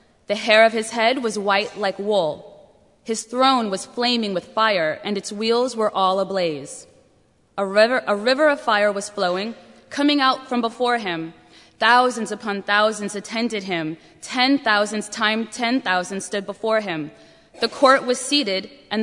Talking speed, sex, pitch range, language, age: 165 wpm, female, 195-235 Hz, English, 20-39